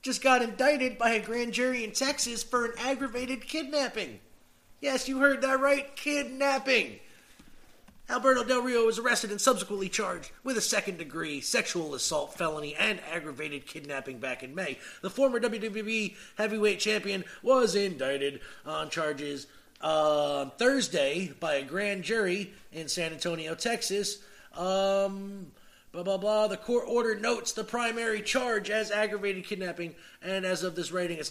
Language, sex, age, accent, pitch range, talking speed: English, male, 30-49, American, 165-230 Hz, 150 wpm